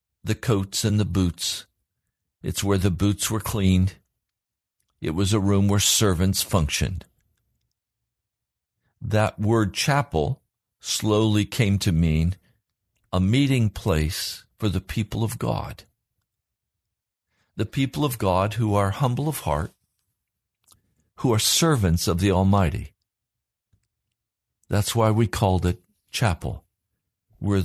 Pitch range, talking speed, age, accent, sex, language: 90-110 Hz, 120 wpm, 50-69, American, male, English